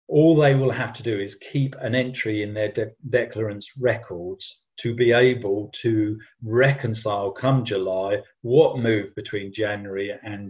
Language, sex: English, male